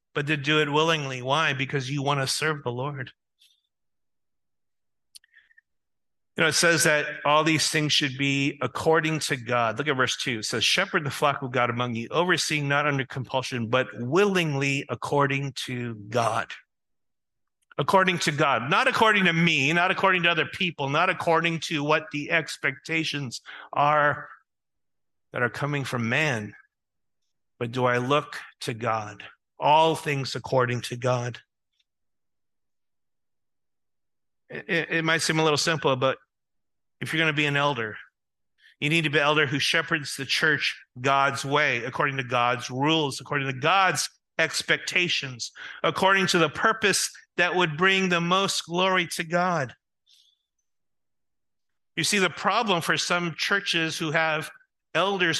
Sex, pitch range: male, 130-165 Hz